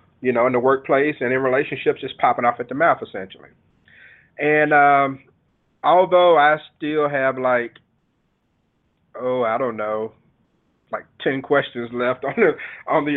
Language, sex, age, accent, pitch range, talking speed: English, male, 30-49, American, 120-140 Hz, 155 wpm